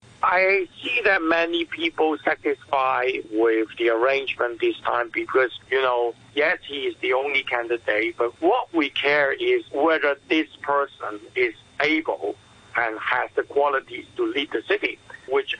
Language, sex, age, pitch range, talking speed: English, male, 60-79, 110-145 Hz, 150 wpm